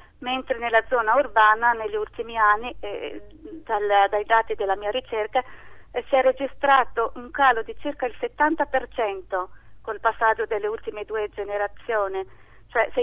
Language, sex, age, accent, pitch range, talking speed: Italian, female, 40-59, native, 210-260 Hz, 145 wpm